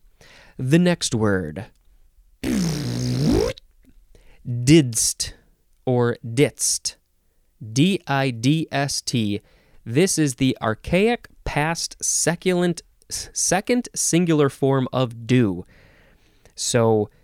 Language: English